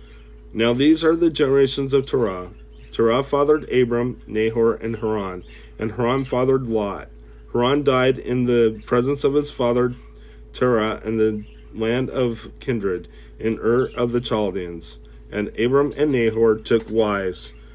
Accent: American